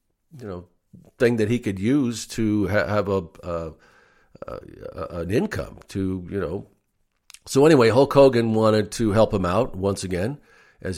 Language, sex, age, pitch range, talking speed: English, male, 50-69, 95-110 Hz, 170 wpm